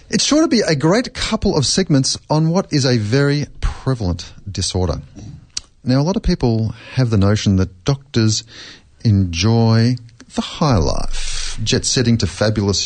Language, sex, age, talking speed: English, male, 40-59, 155 wpm